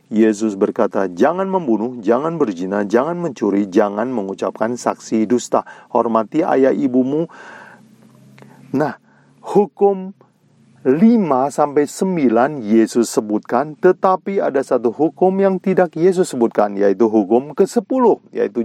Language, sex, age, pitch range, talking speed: Indonesian, male, 40-59, 110-165 Hz, 115 wpm